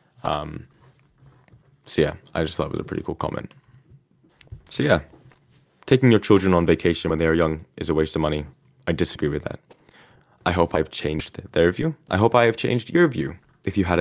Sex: male